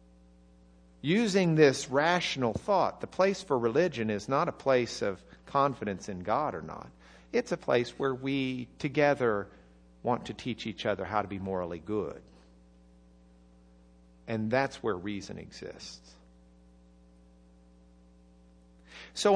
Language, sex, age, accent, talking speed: English, male, 50-69, American, 125 wpm